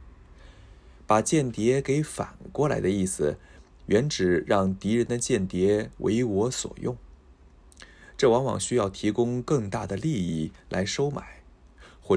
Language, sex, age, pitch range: Japanese, male, 20-39, 75-110 Hz